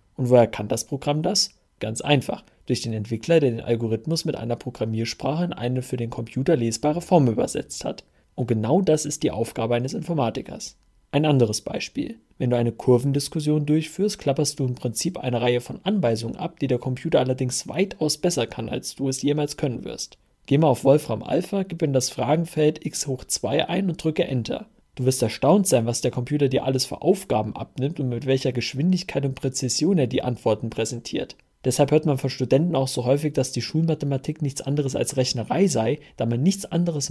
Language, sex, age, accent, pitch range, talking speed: German, male, 40-59, German, 120-150 Hz, 195 wpm